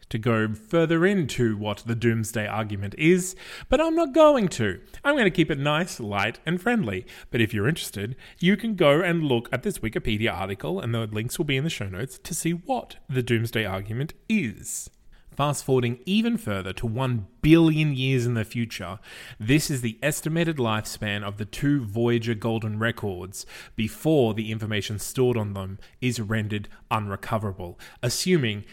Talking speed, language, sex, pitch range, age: 175 wpm, English, male, 105-160 Hz, 20-39